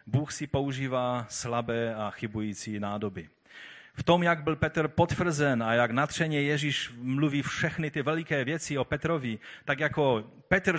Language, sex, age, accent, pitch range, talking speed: Czech, male, 40-59, native, 110-150 Hz, 150 wpm